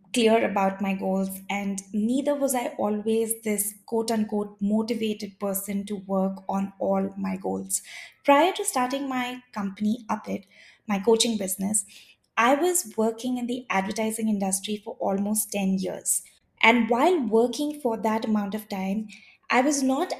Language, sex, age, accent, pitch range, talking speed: English, female, 20-39, Indian, 200-245 Hz, 150 wpm